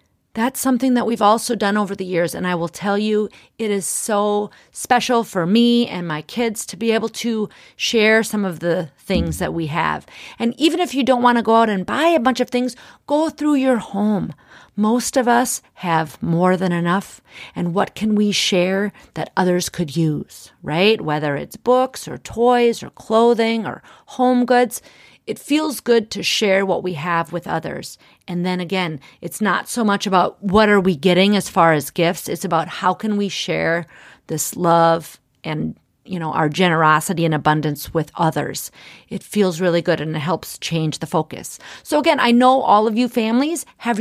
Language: English